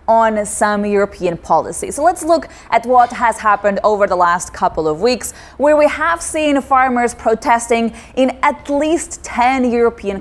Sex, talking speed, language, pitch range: female, 165 wpm, English, 210-270 Hz